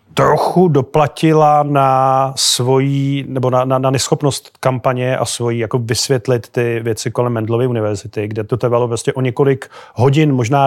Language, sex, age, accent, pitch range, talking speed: Czech, male, 30-49, native, 125-140 Hz, 150 wpm